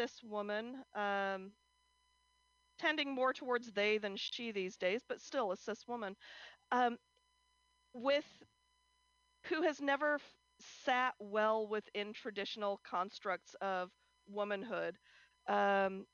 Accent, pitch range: American, 200-305 Hz